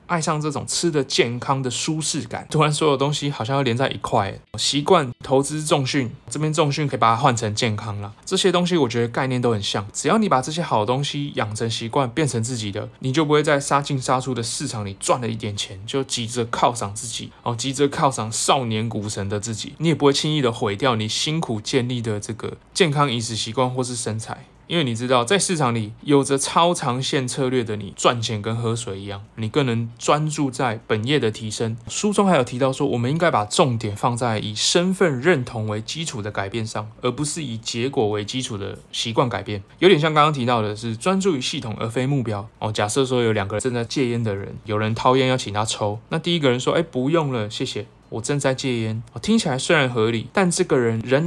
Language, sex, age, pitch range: Chinese, male, 20-39, 110-145 Hz